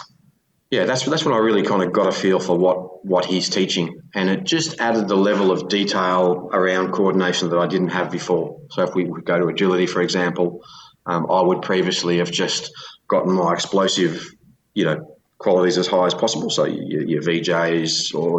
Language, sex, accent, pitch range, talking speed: English, male, Australian, 85-95 Hz, 195 wpm